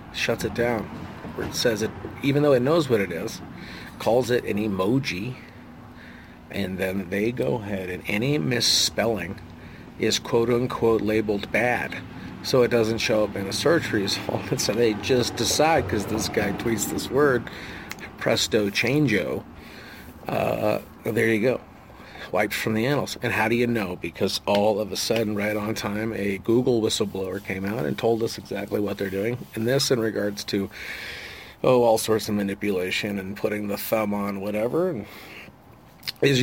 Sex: male